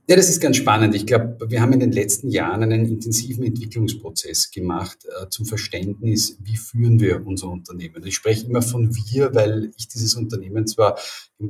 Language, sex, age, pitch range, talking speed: German, male, 50-69, 105-125 Hz, 190 wpm